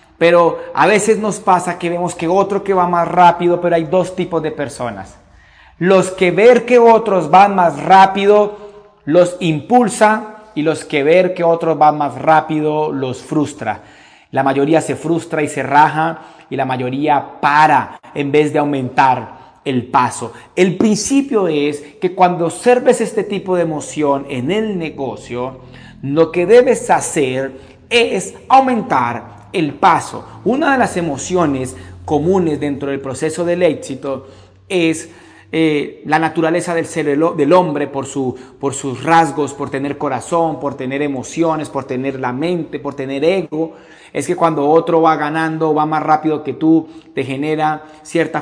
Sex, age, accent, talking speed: male, 40-59, Mexican, 160 wpm